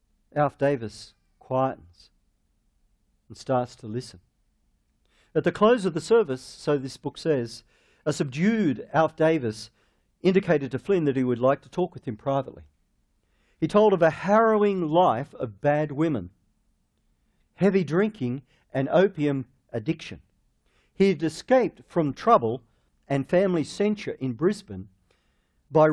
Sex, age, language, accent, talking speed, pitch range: male, 50-69, English, Australian, 135 wpm, 125-180 Hz